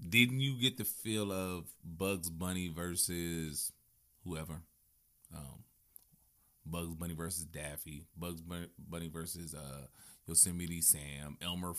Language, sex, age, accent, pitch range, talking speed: English, male, 30-49, American, 80-105 Hz, 110 wpm